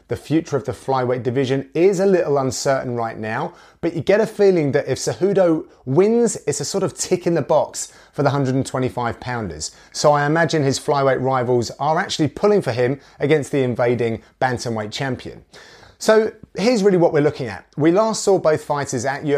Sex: male